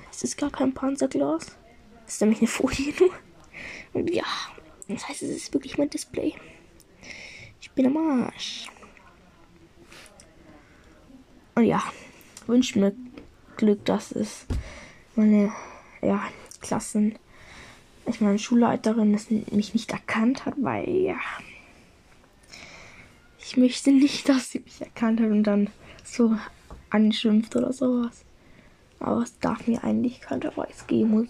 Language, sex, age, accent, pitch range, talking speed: German, female, 10-29, German, 205-255 Hz, 130 wpm